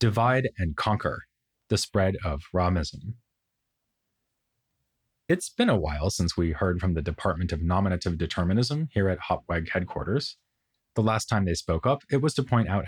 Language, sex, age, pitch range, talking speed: English, male, 30-49, 90-115 Hz, 165 wpm